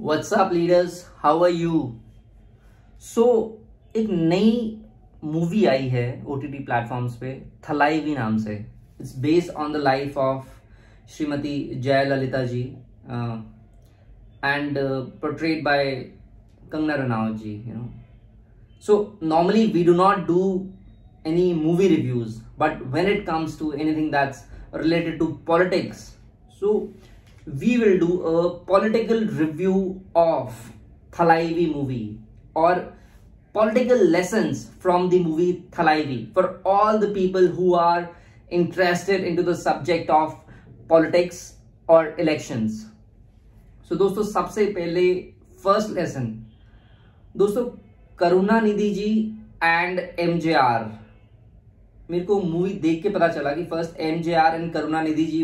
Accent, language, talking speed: Indian, English, 110 wpm